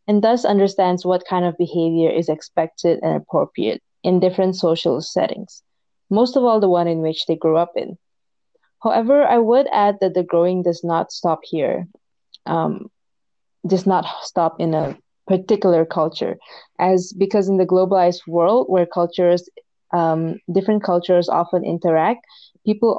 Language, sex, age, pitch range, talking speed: English, female, 20-39, 170-210 Hz, 155 wpm